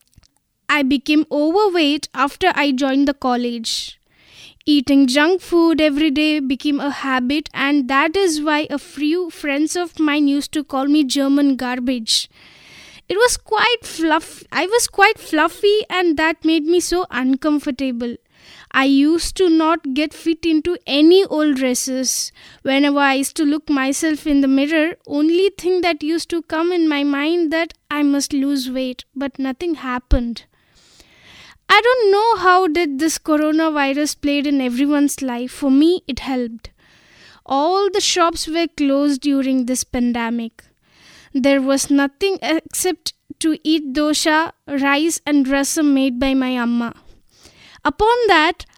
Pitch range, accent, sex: 275-330 Hz, native, female